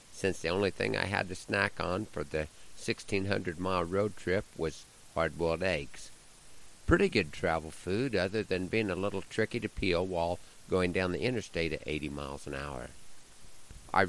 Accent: American